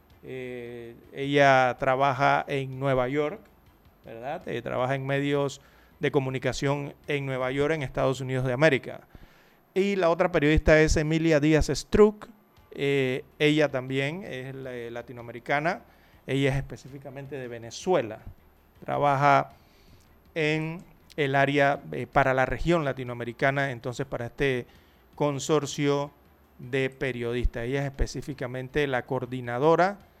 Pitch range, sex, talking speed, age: 125-155 Hz, male, 115 wpm, 30-49